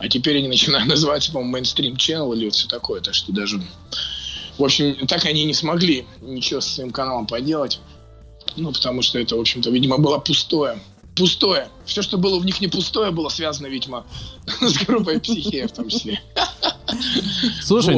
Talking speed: 175 wpm